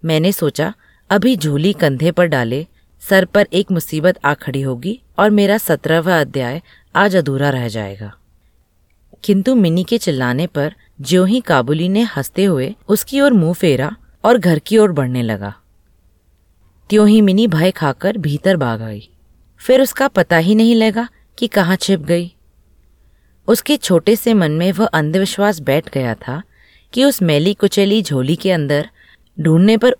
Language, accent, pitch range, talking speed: Hindi, native, 130-200 Hz, 155 wpm